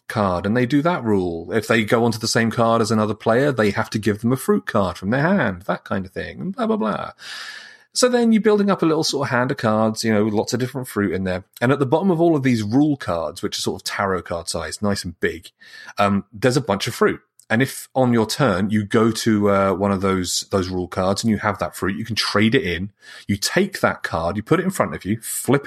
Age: 30-49